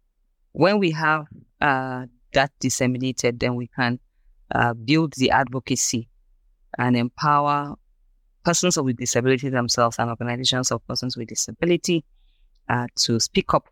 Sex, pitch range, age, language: female, 115-130 Hz, 20-39, English